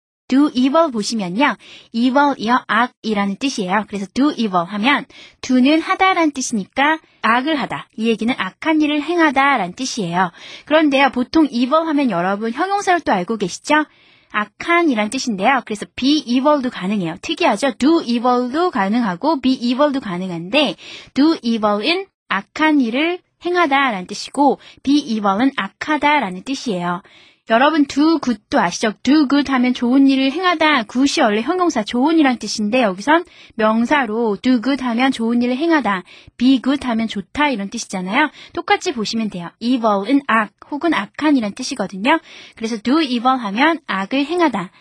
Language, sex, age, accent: Korean, female, 20-39, native